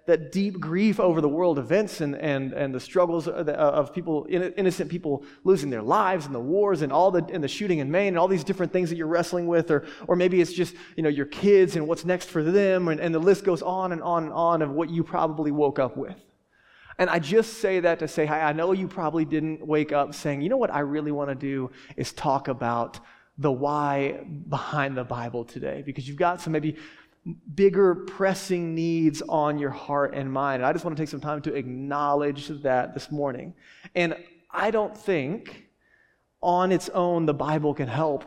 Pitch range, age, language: 140-175 Hz, 20-39, English